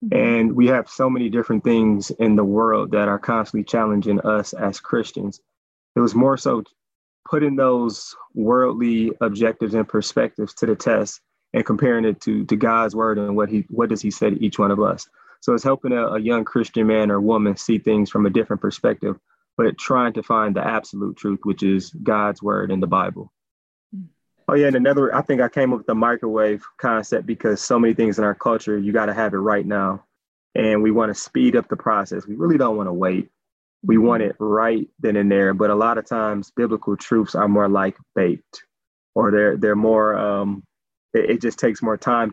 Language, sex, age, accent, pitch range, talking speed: English, male, 20-39, American, 105-115 Hz, 210 wpm